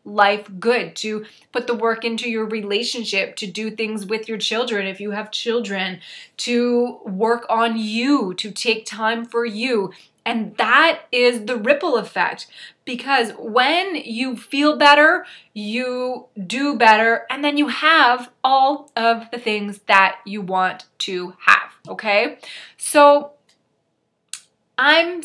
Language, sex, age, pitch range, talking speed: English, female, 20-39, 200-245 Hz, 140 wpm